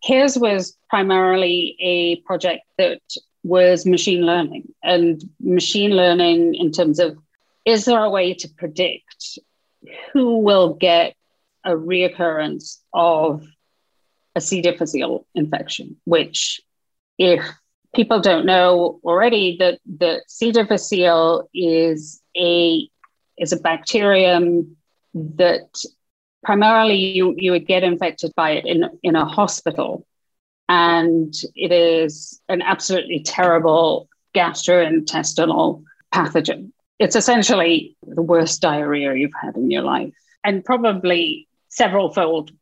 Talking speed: 115 wpm